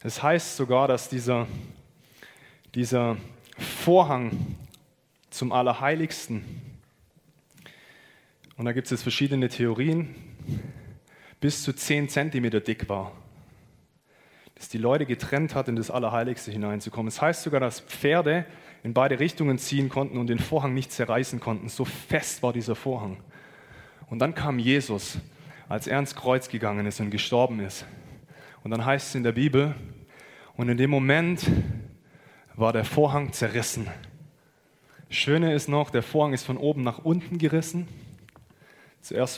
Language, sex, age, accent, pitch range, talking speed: German, male, 20-39, German, 120-145 Hz, 140 wpm